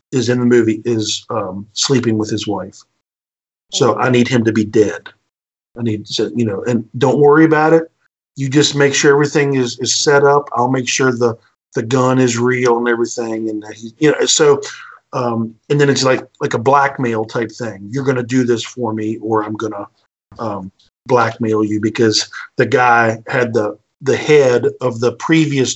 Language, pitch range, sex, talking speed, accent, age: English, 110-145 Hz, male, 200 wpm, American, 50-69